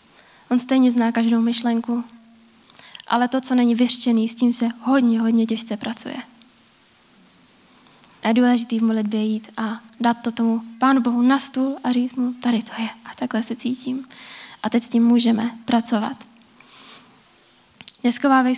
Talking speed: 145 wpm